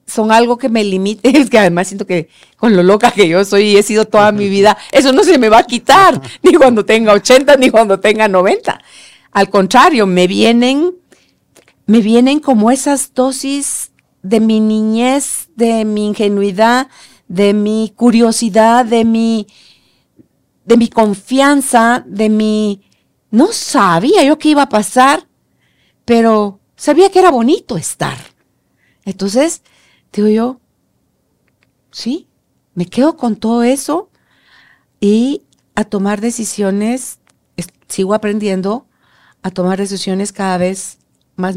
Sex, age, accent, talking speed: female, 50-69, Mexican, 135 wpm